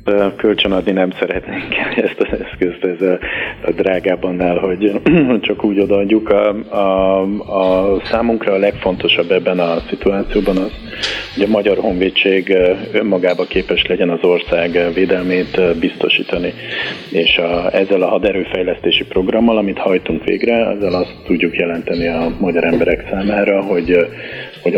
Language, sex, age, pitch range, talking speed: Hungarian, male, 40-59, 85-105 Hz, 130 wpm